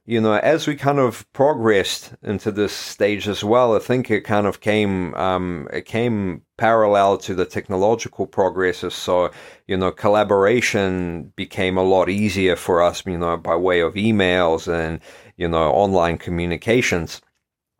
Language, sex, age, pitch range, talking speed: English, male, 40-59, 90-115 Hz, 160 wpm